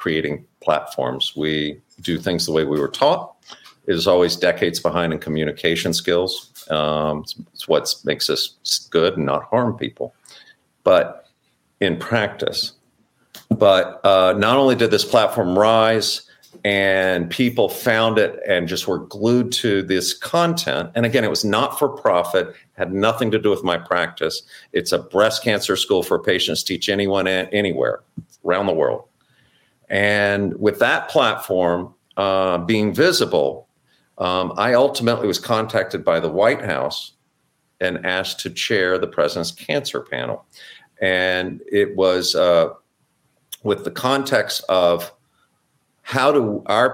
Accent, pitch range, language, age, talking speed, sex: American, 85-115 Hz, English, 50-69, 145 wpm, male